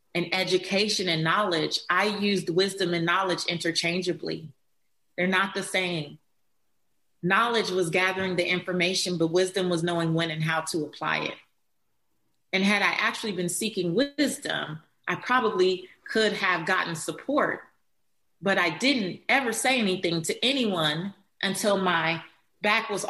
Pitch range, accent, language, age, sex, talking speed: 170-210 Hz, American, English, 30-49, female, 140 wpm